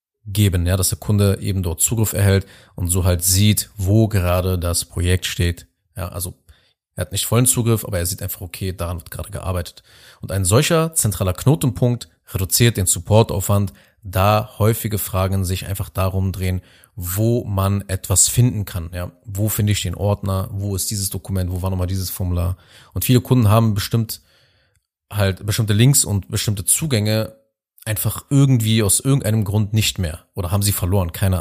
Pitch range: 90-110 Hz